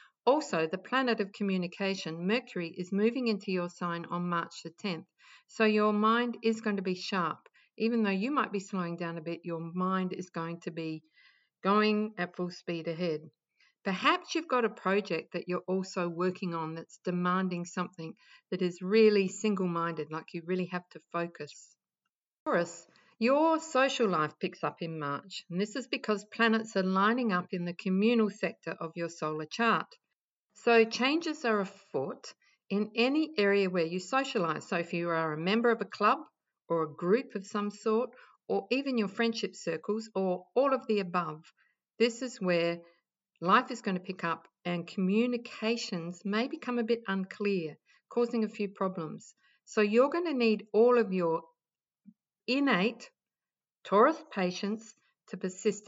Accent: Australian